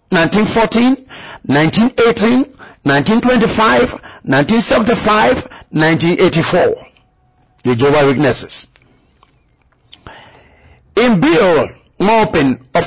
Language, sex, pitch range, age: English, male, 160-215 Hz, 50-69